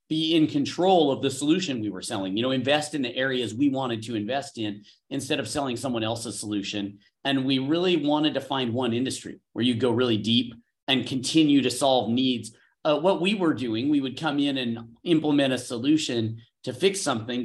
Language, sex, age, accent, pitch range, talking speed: English, male, 40-59, American, 120-155 Hz, 205 wpm